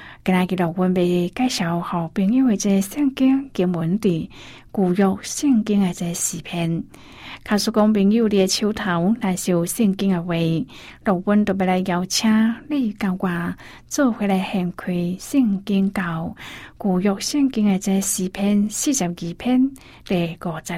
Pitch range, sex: 170-215 Hz, female